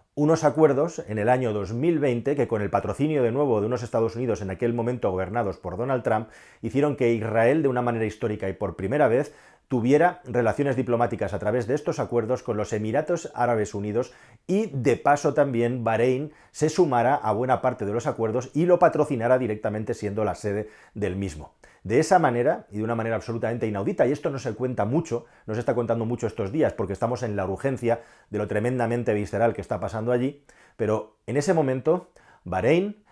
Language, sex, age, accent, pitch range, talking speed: Spanish, male, 40-59, Spanish, 105-135 Hz, 200 wpm